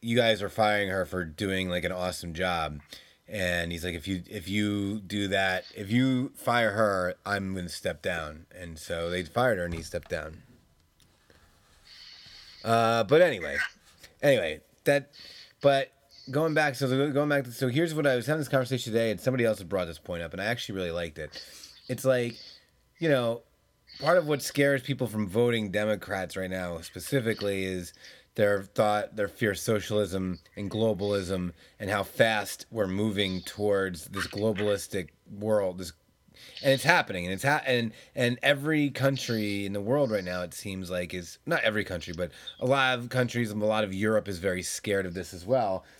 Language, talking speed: English, 190 wpm